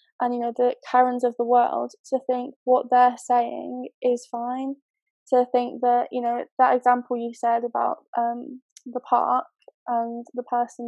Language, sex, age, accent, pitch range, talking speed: English, female, 10-29, British, 240-260 Hz, 170 wpm